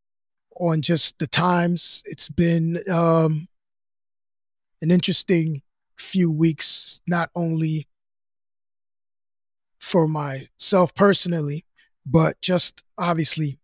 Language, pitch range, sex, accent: English, 145-175 Hz, male, American